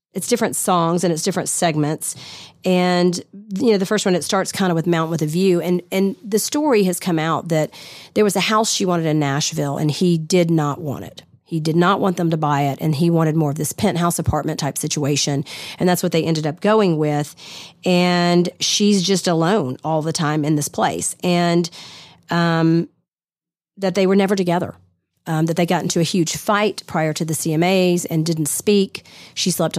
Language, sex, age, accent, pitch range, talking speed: English, female, 40-59, American, 155-190 Hz, 205 wpm